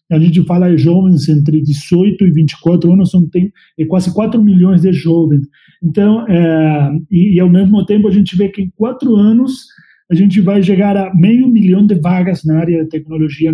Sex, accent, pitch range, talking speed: male, Brazilian, 155-195 Hz, 195 wpm